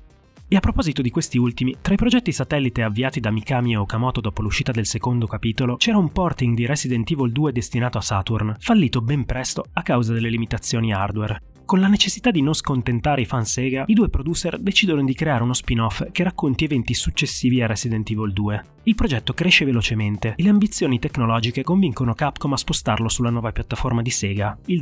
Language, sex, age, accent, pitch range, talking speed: Italian, male, 20-39, native, 115-155 Hz, 195 wpm